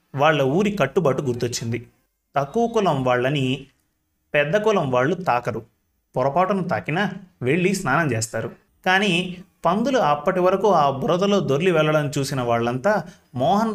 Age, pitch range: 30-49, 130-190 Hz